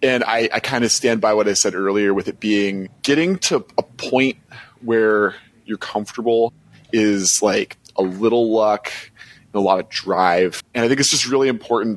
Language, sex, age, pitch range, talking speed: English, male, 20-39, 110-140 Hz, 185 wpm